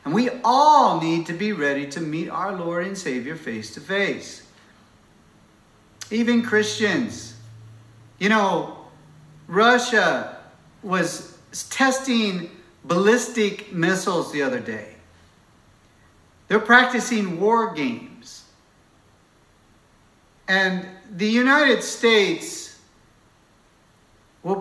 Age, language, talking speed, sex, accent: 50-69, English, 90 wpm, male, American